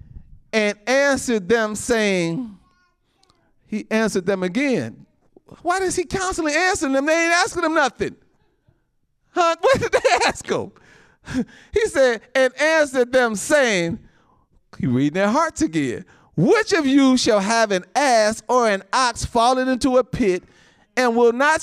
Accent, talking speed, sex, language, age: American, 145 wpm, male, English, 40-59